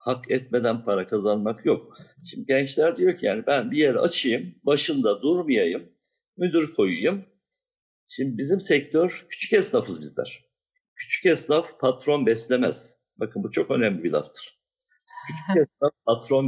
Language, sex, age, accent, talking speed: Turkish, male, 60-79, native, 135 wpm